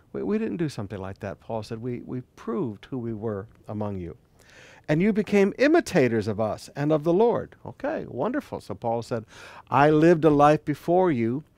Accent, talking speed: American, 195 wpm